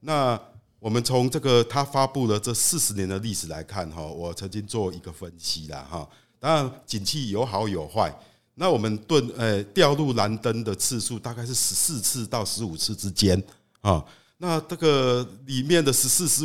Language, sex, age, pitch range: Chinese, male, 50-69, 105-145 Hz